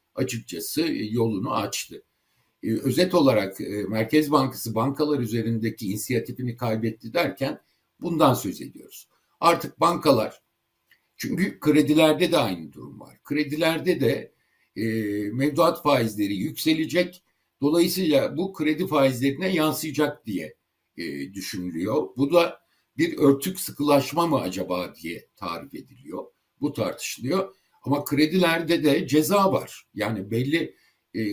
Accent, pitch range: native, 115-160 Hz